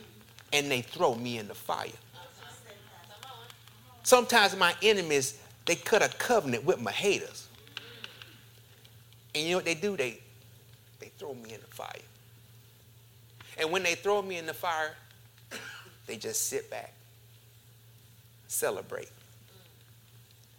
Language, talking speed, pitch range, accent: English, 125 wpm, 115-120 Hz, American